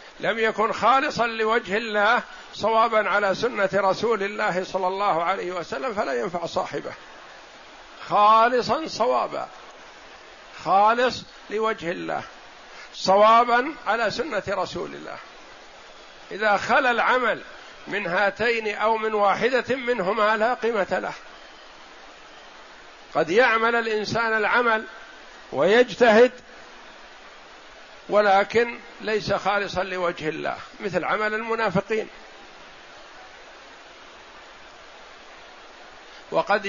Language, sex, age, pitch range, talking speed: Arabic, male, 50-69, 200-235 Hz, 85 wpm